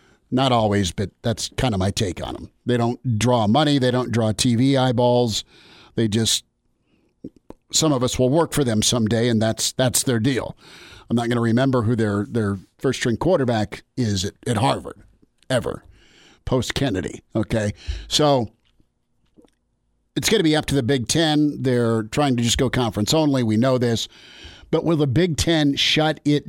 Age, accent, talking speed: 50-69, American, 175 wpm